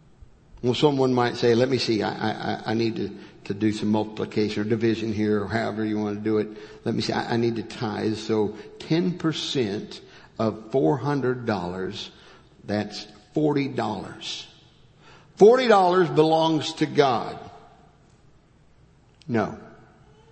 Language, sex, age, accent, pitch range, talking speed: English, male, 60-79, American, 110-160 Hz, 135 wpm